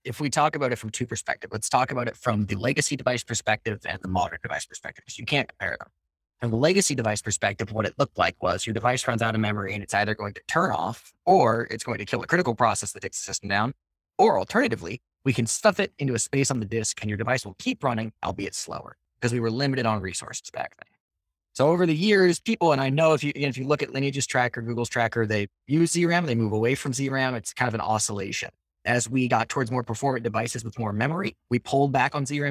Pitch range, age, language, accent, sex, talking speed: 110-140 Hz, 20-39, English, American, male, 255 wpm